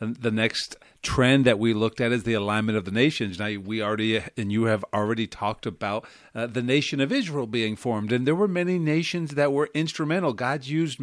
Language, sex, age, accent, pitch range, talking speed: English, male, 50-69, American, 120-150 Hz, 210 wpm